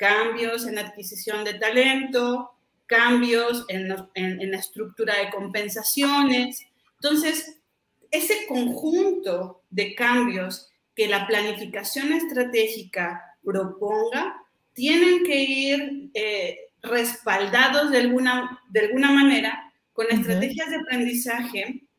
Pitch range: 210-275 Hz